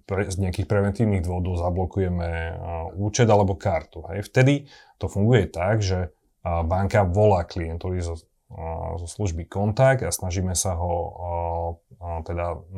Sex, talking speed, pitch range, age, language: male, 130 wpm, 85-100 Hz, 30-49, Slovak